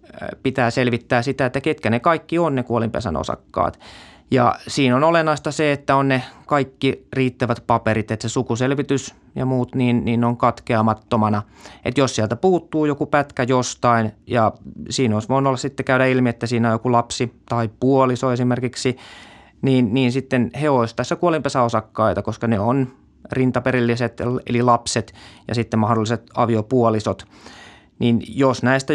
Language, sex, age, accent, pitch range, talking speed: Finnish, male, 20-39, native, 110-130 Hz, 155 wpm